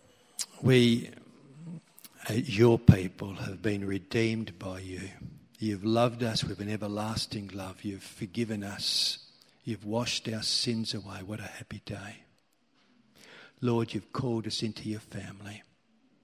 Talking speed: 125 wpm